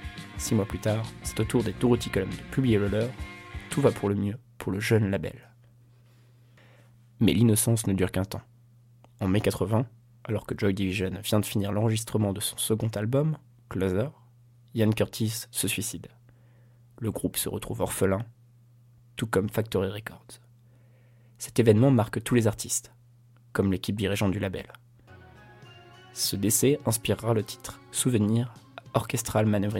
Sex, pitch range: male, 105-120 Hz